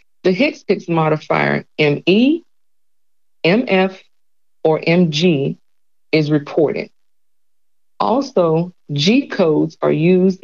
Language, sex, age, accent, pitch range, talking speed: English, female, 40-59, American, 160-205 Hz, 80 wpm